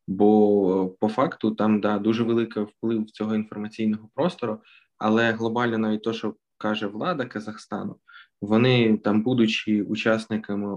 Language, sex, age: Ukrainian, male, 20-39